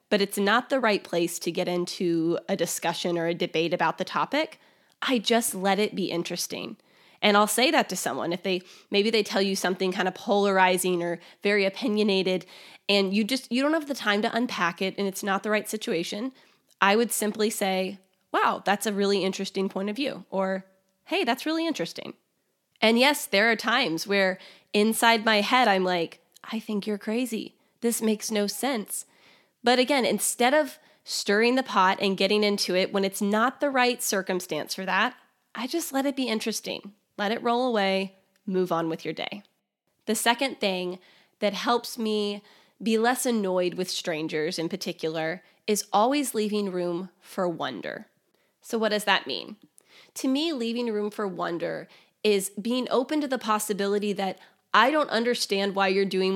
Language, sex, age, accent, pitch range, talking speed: English, female, 20-39, American, 185-230 Hz, 185 wpm